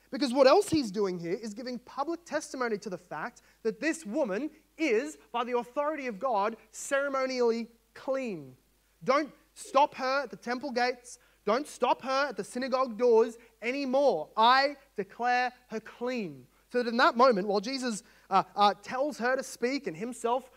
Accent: Australian